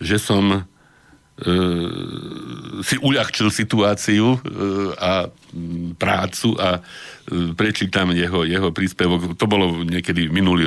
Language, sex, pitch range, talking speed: Slovak, male, 85-100 Hz, 105 wpm